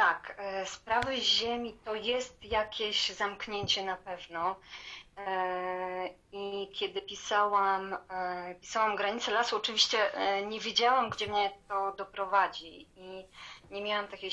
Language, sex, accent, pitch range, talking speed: Polish, female, native, 185-205 Hz, 110 wpm